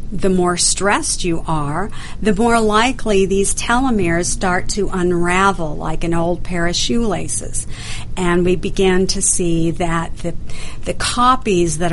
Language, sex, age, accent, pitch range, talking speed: English, female, 50-69, American, 170-200 Hz, 145 wpm